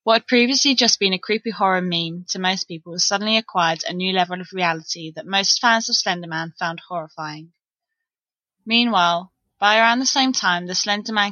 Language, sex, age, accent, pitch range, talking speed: English, female, 20-39, British, 175-220 Hz, 180 wpm